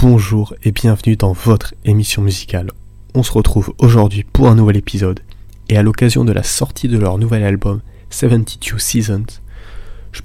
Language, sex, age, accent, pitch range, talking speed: French, male, 20-39, French, 100-115 Hz, 165 wpm